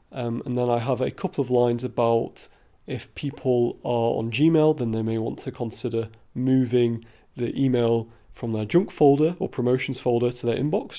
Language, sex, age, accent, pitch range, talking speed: English, male, 30-49, British, 115-140 Hz, 185 wpm